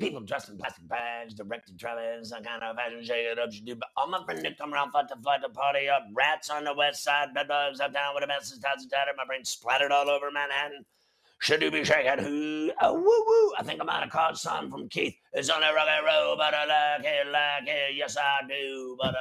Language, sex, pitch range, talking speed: English, male, 135-155 Hz, 255 wpm